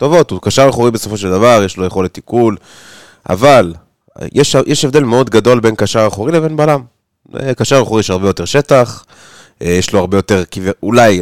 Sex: male